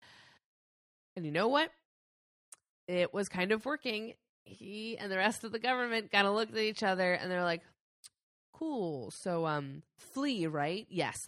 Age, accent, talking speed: 20-39, American, 165 wpm